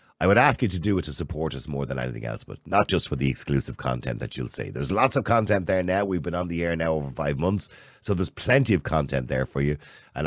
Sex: male